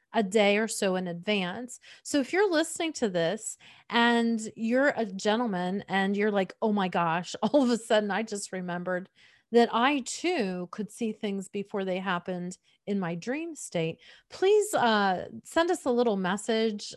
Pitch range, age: 185-240 Hz, 40-59